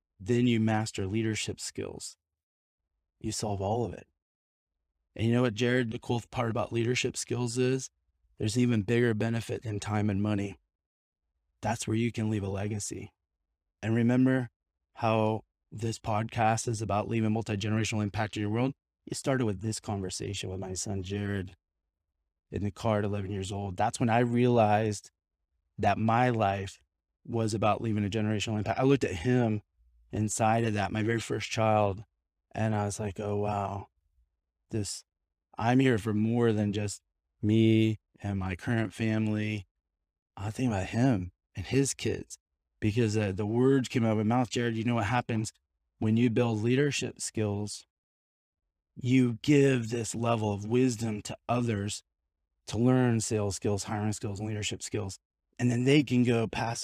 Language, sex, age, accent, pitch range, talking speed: English, male, 20-39, American, 95-115 Hz, 165 wpm